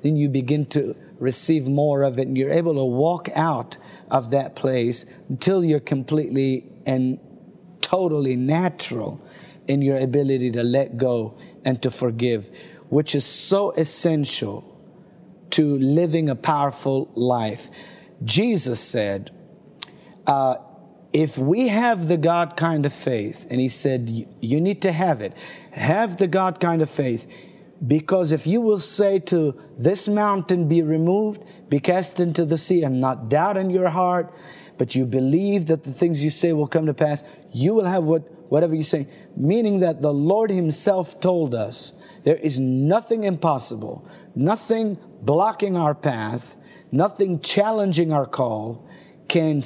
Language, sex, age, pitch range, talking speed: English, male, 50-69, 135-180 Hz, 150 wpm